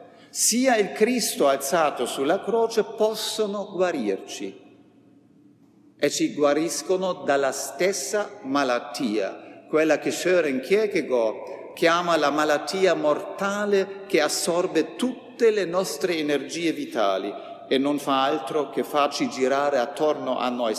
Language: Italian